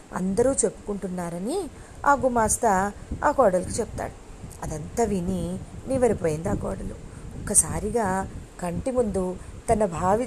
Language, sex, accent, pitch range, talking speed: Telugu, female, native, 185-235 Hz, 100 wpm